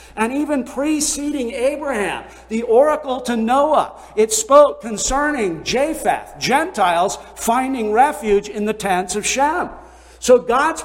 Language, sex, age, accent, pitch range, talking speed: English, male, 50-69, American, 220-290 Hz, 120 wpm